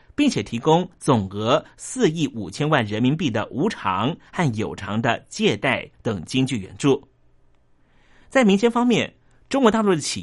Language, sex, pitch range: Chinese, male, 120-180 Hz